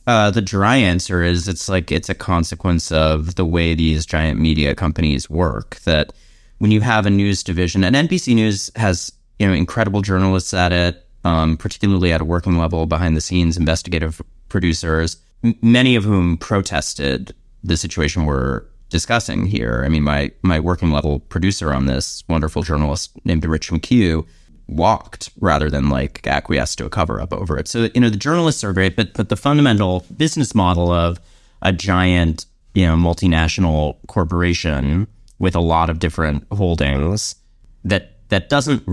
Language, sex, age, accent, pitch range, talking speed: English, male, 30-49, American, 80-100 Hz, 170 wpm